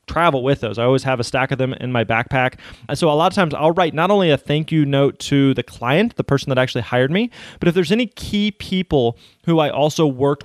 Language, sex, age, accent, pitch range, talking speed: English, male, 20-39, American, 125-155 Hz, 260 wpm